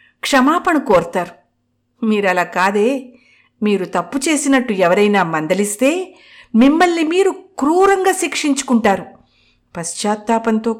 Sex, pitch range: female, 190-275 Hz